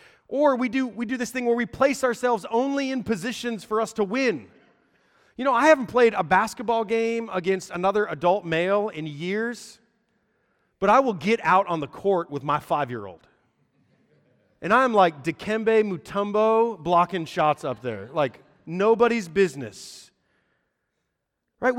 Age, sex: 30-49, male